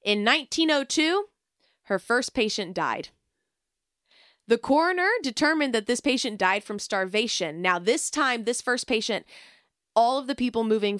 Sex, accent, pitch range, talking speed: female, American, 190-260 Hz, 140 wpm